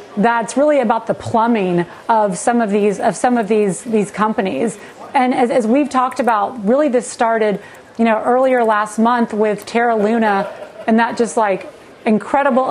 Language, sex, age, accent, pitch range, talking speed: English, female, 30-49, American, 205-245 Hz, 175 wpm